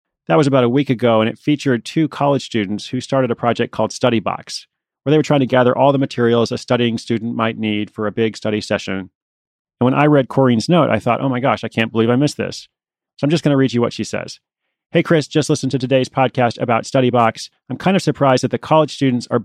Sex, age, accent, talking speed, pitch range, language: male, 30-49, American, 260 wpm, 115-140 Hz, English